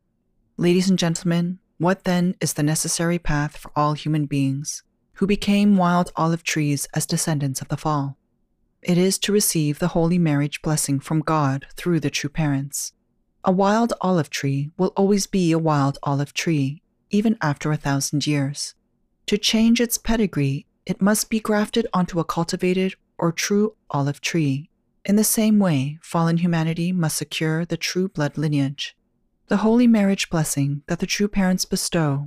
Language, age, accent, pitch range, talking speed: English, 40-59, American, 150-200 Hz, 165 wpm